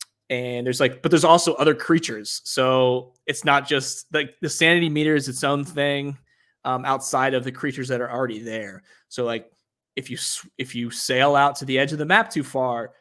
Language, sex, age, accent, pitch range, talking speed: English, male, 20-39, American, 125-155 Hz, 210 wpm